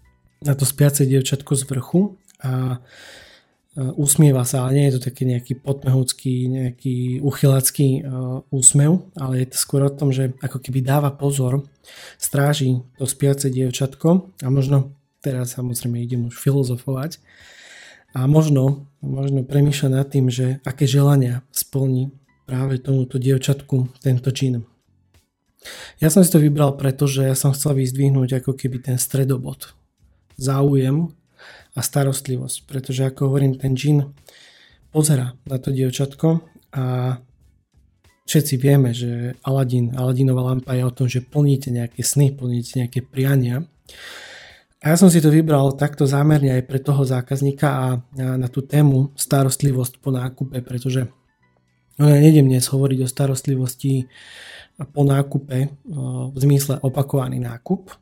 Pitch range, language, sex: 130-140 Hz, Slovak, male